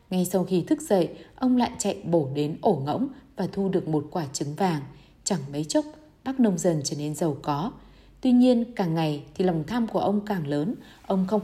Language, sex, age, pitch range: Vietnamese, female, 20-39, 165-220 Hz